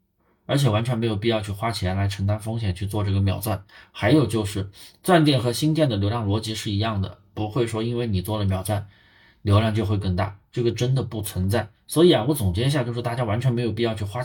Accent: native